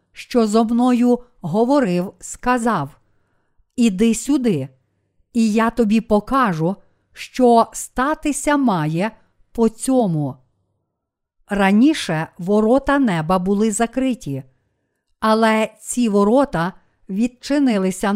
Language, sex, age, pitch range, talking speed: Ukrainian, female, 50-69, 185-240 Hz, 85 wpm